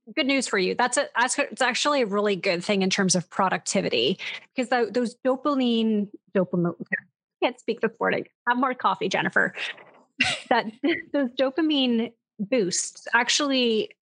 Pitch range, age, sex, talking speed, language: 200-255 Hz, 30-49, female, 145 wpm, English